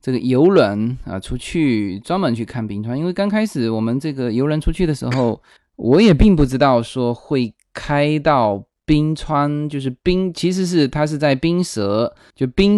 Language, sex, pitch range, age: Chinese, male, 115-170 Hz, 20-39